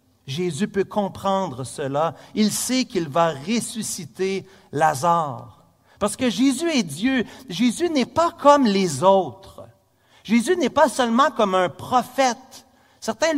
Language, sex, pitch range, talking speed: French, male, 180-255 Hz, 130 wpm